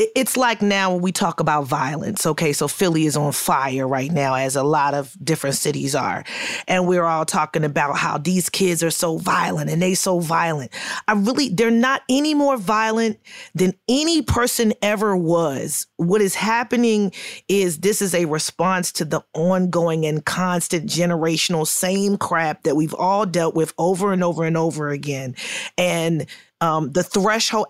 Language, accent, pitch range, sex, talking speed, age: English, American, 165-215 Hz, female, 175 wpm, 30-49